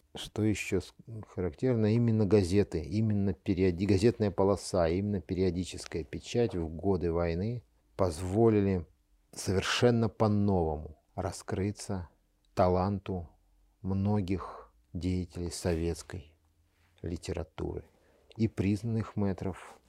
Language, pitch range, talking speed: Russian, 85-100 Hz, 80 wpm